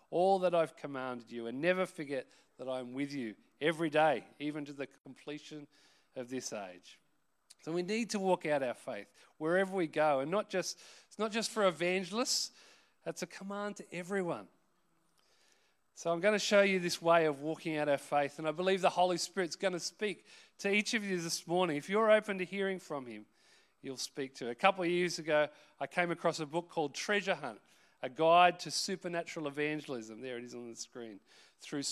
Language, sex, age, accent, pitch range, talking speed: English, male, 40-59, Australian, 145-190 Hz, 205 wpm